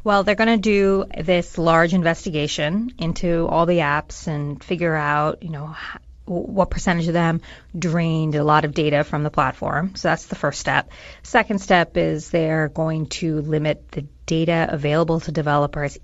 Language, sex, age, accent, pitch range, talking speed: English, female, 30-49, American, 150-180 Hz, 170 wpm